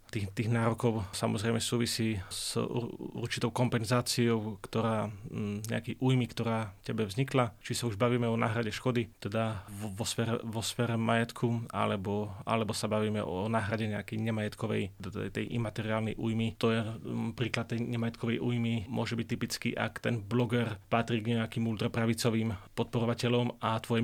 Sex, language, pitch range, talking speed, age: male, Slovak, 110-115 Hz, 140 wpm, 30-49